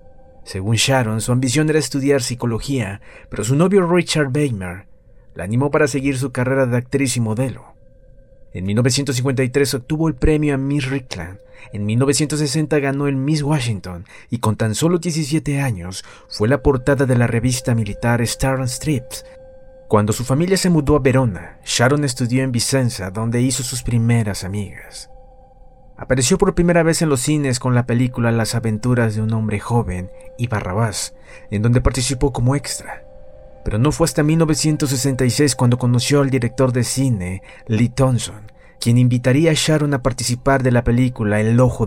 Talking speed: 165 wpm